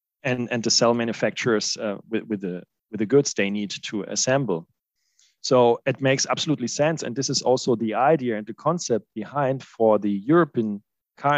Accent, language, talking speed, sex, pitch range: German, English, 185 wpm, male, 110-130 Hz